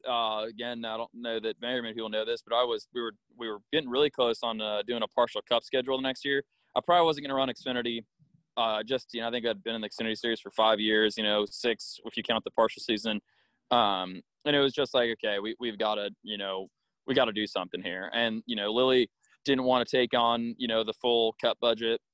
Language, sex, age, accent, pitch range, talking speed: English, male, 20-39, American, 105-120 Hz, 265 wpm